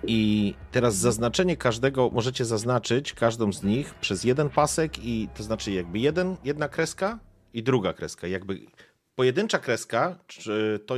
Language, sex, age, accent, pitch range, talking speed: Polish, male, 40-59, native, 95-130 Hz, 150 wpm